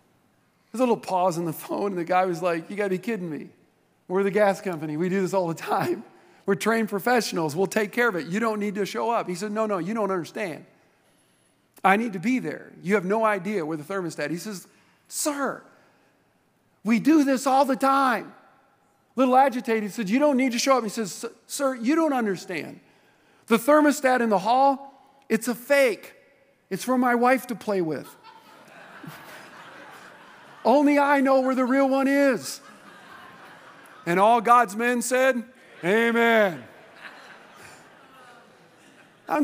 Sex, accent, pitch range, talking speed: male, American, 190-265 Hz, 180 wpm